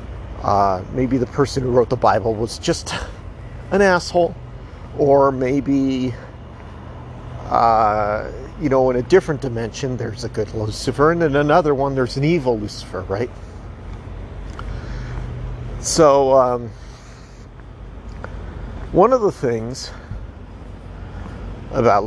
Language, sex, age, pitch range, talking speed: English, male, 40-59, 95-135 Hz, 110 wpm